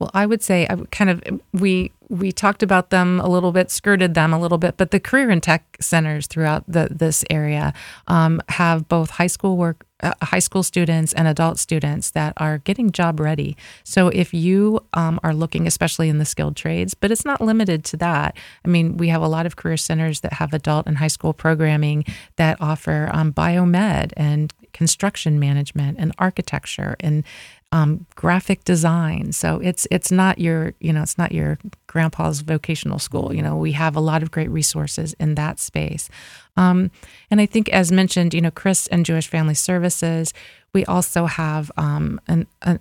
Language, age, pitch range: English, 30-49, 155-180 Hz